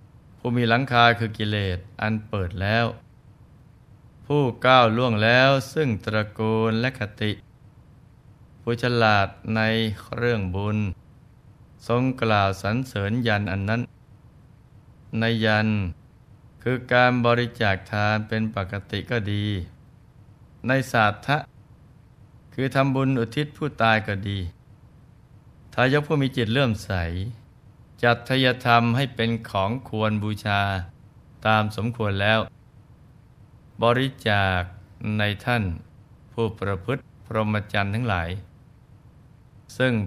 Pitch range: 105-125 Hz